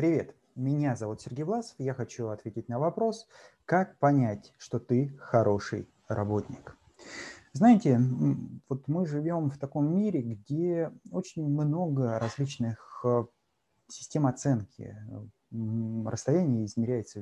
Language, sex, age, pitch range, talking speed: Russian, male, 30-49, 110-140 Hz, 110 wpm